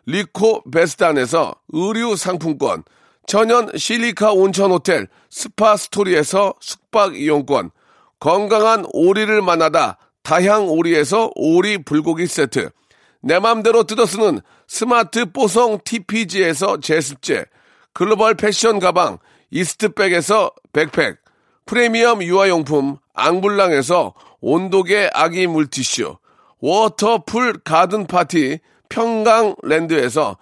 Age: 40-59